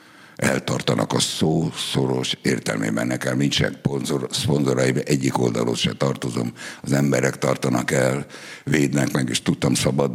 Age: 60-79